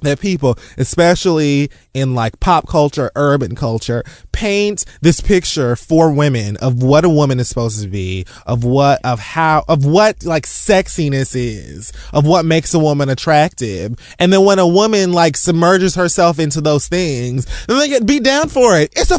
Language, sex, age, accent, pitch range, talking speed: English, male, 20-39, American, 125-200 Hz, 180 wpm